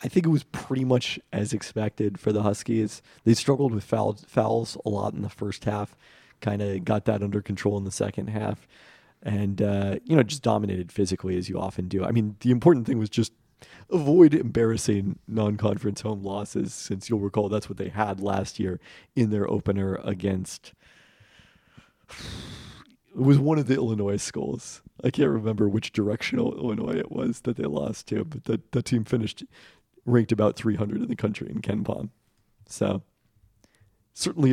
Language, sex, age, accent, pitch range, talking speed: English, male, 40-59, American, 100-115 Hz, 175 wpm